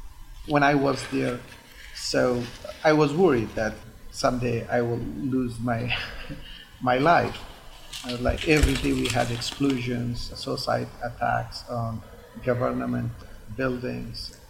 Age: 50-69